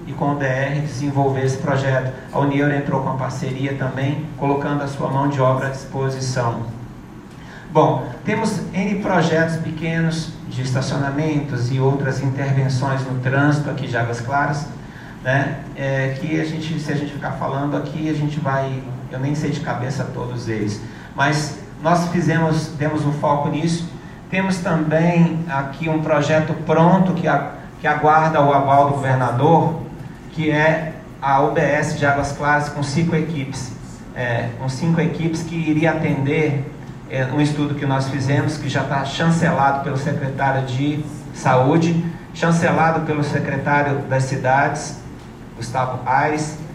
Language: Portuguese